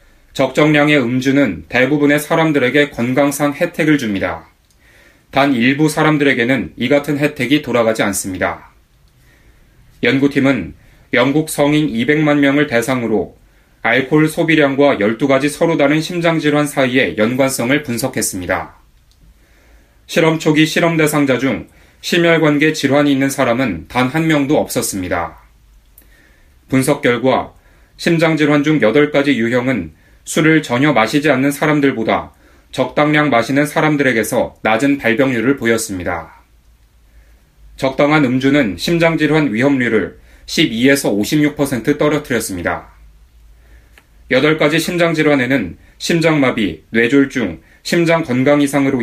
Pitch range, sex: 120-155 Hz, male